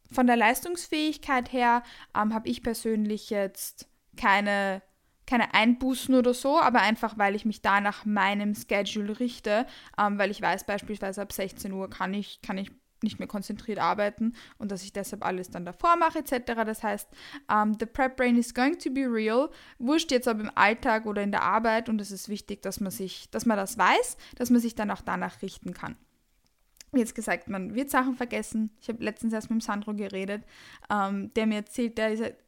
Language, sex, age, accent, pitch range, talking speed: German, female, 10-29, German, 210-250 Hz, 190 wpm